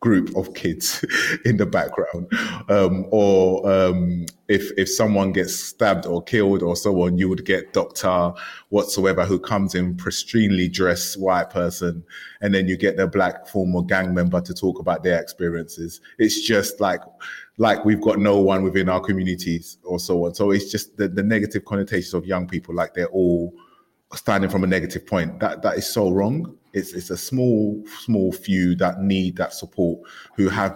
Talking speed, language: 185 wpm, English